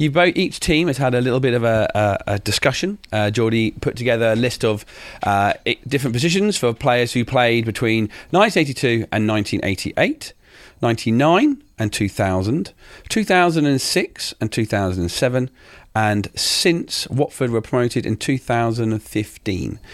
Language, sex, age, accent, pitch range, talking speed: English, male, 40-59, British, 100-135 Hz, 130 wpm